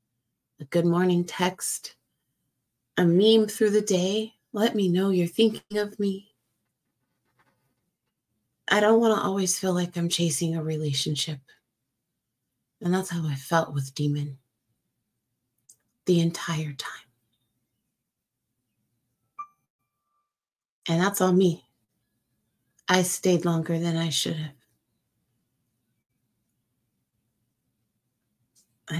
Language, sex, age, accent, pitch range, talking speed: English, female, 30-49, American, 125-175 Hz, 100 wpm